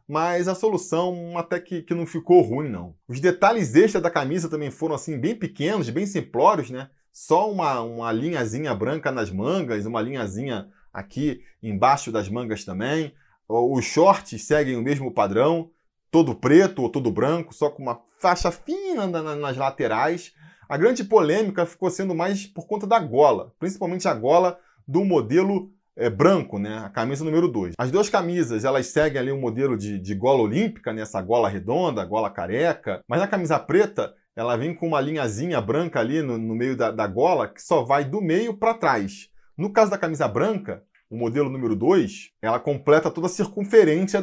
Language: Portuguese